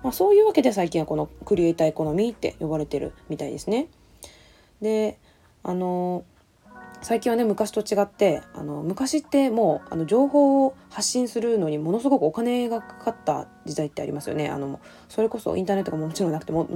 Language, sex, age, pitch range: Japanese, female, 20-39, 155-230 Hz